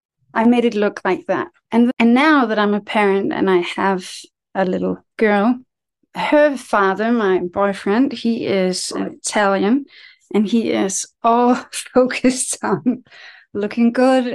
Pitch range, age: 195-255 Hz, 30-49